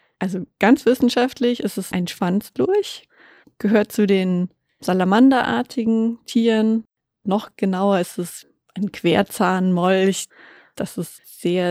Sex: female